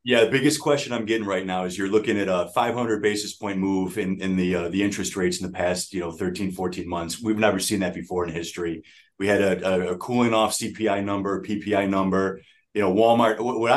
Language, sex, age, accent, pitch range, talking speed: English, male, 30-49, American, 95-120 Hz, 230 wpm